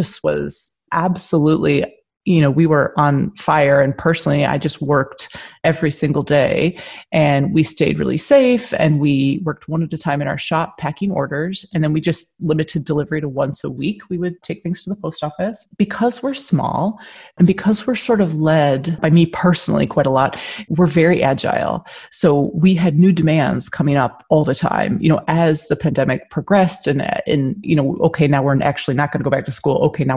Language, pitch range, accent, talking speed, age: English, 145-180 Hz, American, 205 wpm, 30-49